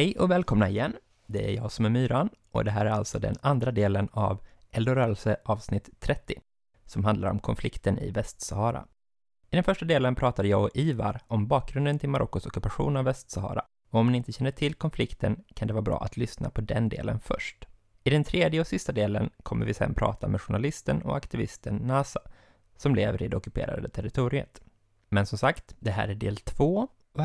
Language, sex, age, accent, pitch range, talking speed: Swedish, male, 20-39, native, 105-135 Hz, 195 wpm